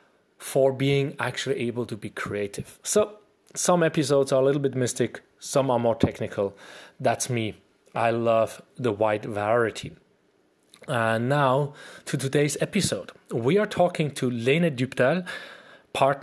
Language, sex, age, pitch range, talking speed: English, male, 30-49, 115-145 Hz, 140 wpm